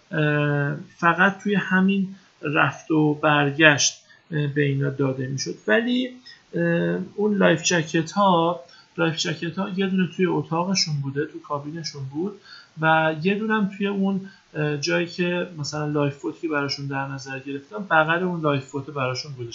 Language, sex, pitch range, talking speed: Persian, male, 145-185 Hz, 140 wpm